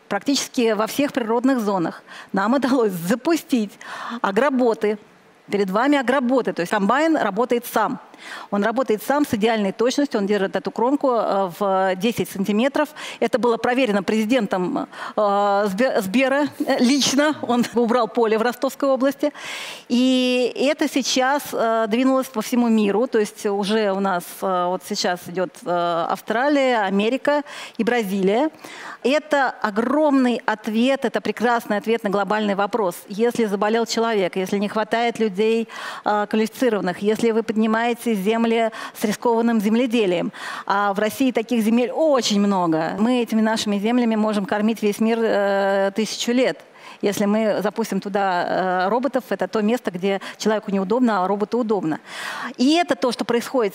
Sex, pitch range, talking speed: female, 210-260 Hz, 135 wpm